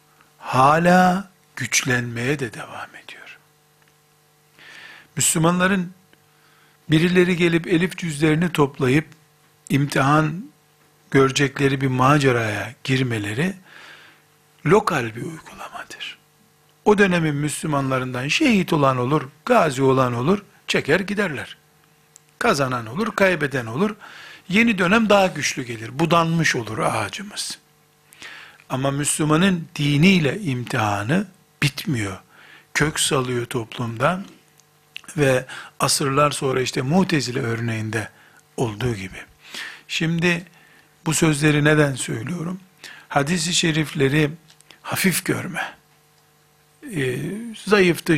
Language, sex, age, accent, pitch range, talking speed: Turkish, male, 60-79, native, 130-170 Hz, 85 wpm